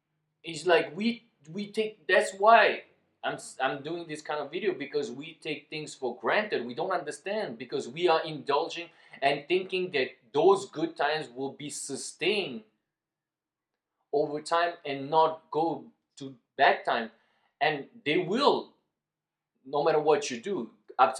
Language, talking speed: English, 150 wpm